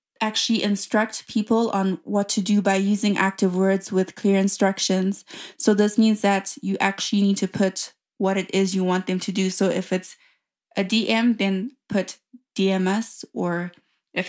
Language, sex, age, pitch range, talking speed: English, female, 20-39, 190-225 Hz, 170 wpm